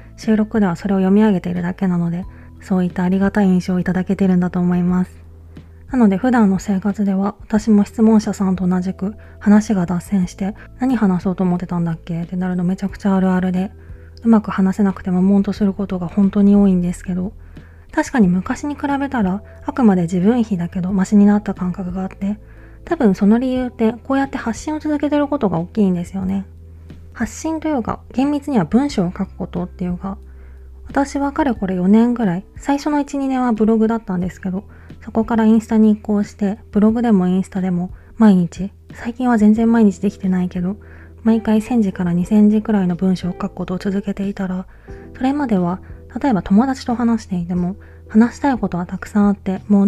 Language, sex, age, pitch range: Japanese, female, 20-39, 180-220 Hz